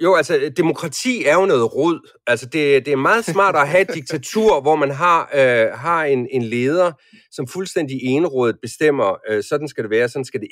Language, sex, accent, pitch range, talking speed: Danish, male, native, 135-225 Hz, 215 wpm